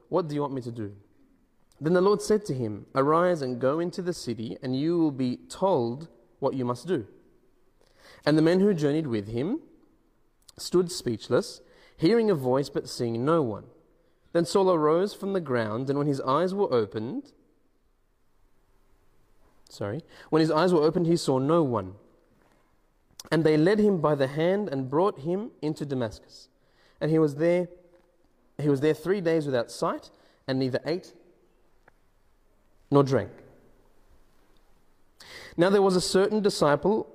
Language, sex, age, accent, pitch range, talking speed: English, male, 30-49, Australian, 130-175 Hz, 160 wpm